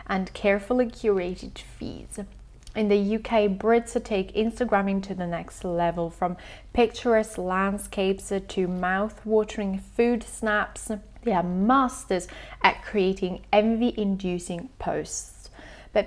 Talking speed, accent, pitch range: 110 wpm, British, 190-245 Hz